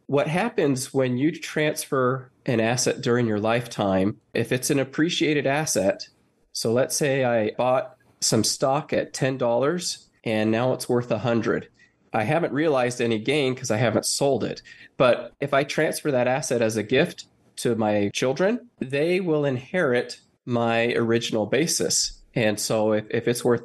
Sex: male